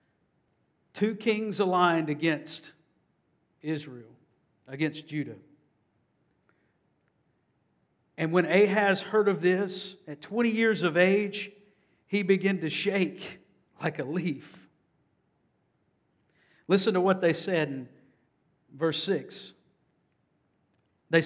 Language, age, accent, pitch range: English, 50-69, American, 165-210 Hz